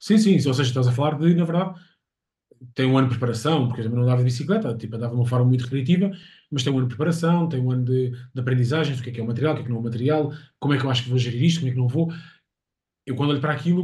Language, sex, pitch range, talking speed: Portuguese, male, 120-150 Hz, 320 wpm